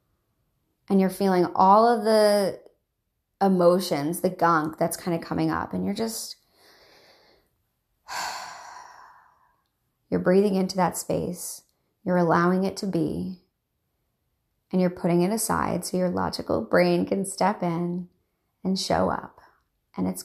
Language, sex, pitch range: English, female, 175-200 Hz